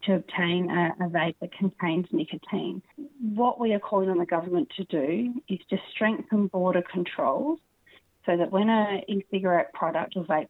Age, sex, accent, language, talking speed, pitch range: 30-49, female, Australian, English, 170 wpm, 125-190 Hz